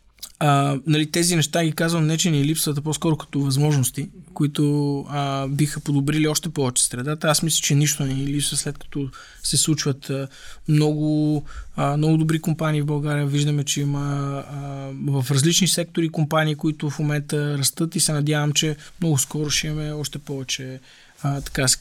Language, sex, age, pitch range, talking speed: Bulgarian, male, 20-39, 140-160 Hz, 175 wpm